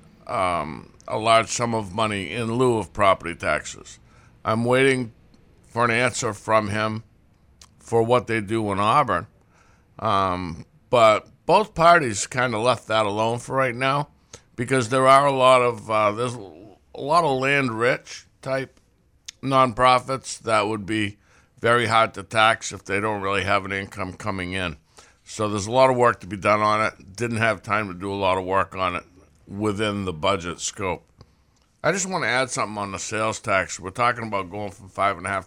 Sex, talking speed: male, 190 wpm